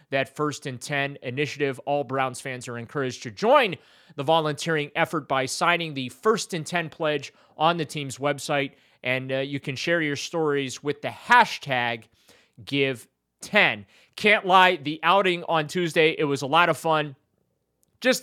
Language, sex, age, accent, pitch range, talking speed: English, male, 30-49, American, 135-170 Hz, 165 wpm